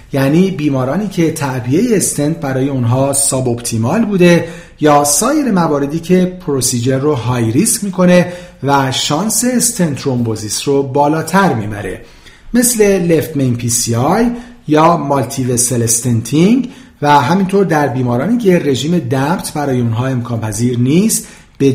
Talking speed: 130 wpm